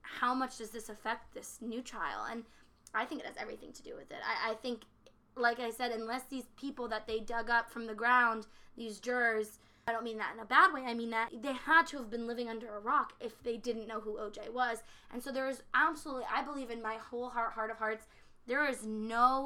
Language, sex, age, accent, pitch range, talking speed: English, female, 20-39, American, 220-255 Hz, 245 wpm